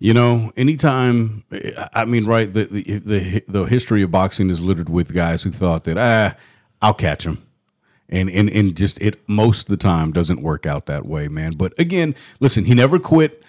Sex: male